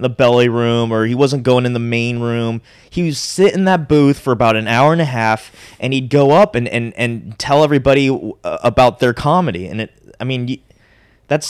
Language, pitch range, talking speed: English, 115-150 Hz, 215 wpm